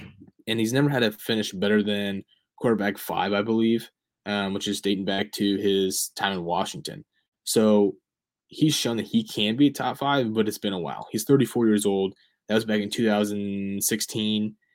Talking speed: 185 wpm